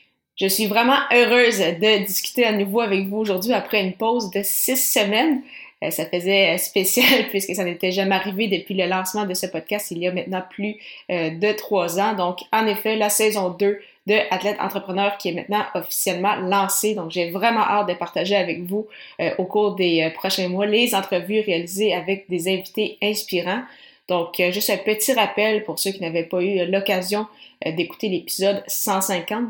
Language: French